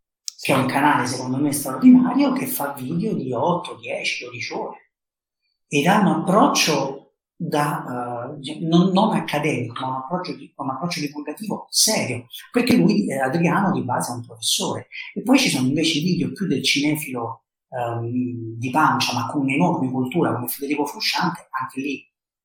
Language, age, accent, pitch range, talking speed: Italian, 40-59, native, 130-175 Hz, 170 wpm